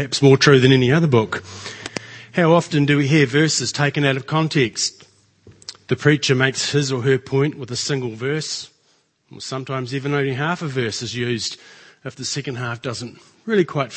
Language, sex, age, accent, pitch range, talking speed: English, male, 40-59, Australian, 125-150 Hz, 195 wpm